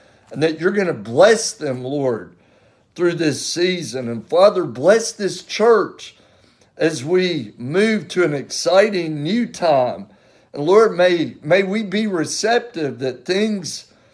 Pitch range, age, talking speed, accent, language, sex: 140-185 Hz, 60-79, 140 wpm, American, English, male